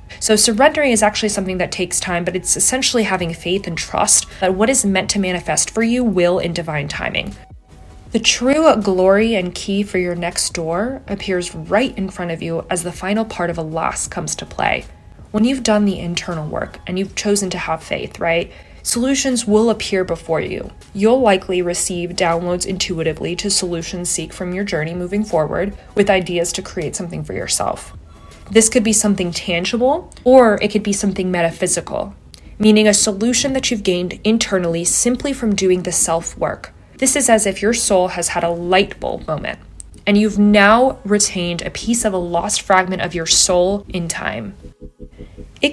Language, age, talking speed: English, 20-39, 185 wpm